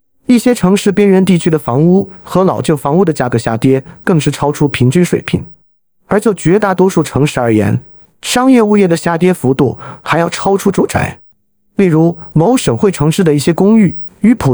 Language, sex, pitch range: Chinese, male, 140-190 Hz